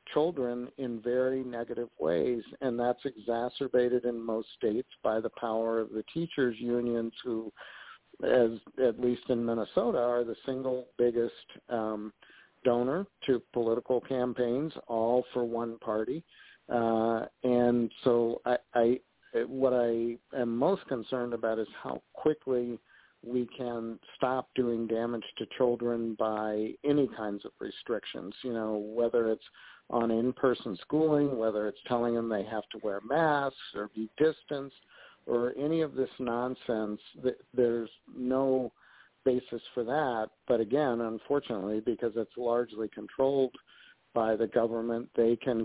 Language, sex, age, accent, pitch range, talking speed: English, male, 50-69, American, 115-130 Hz, 135 wpm